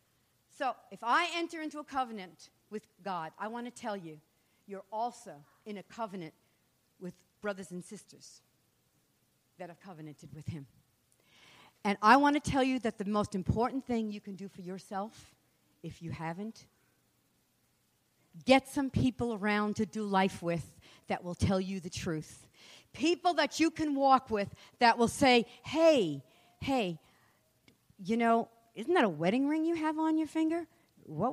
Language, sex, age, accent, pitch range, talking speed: English, female, 50-69, American, 155-230 Hz, 165 wpm